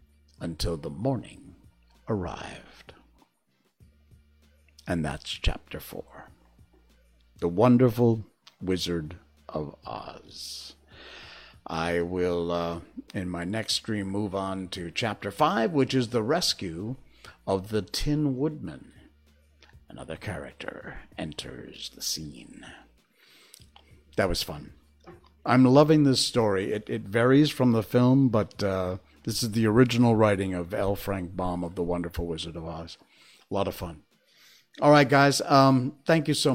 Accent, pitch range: American, 85-125 Hz